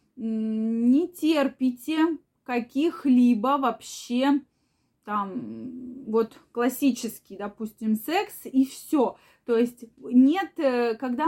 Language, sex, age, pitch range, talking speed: Russian, female, 20-39, 225-275 Hz, 80 wpm